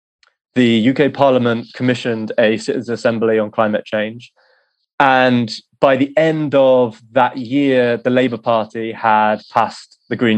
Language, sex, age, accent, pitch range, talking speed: English, male, 20-39, British, 110-130 Hz, 140 wpm